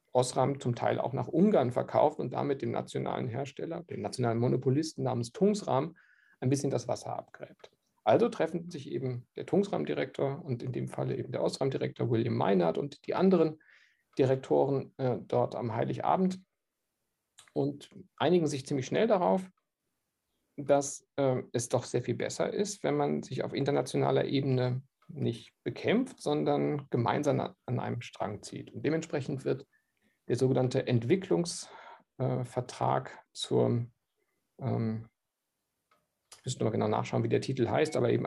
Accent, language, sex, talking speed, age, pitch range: German, German, male, 145 wpm, 50-69, 120-160 Hz